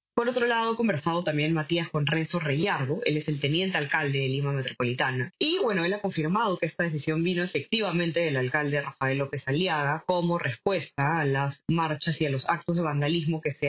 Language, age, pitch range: Spanish, 20-39, 145-190 Hz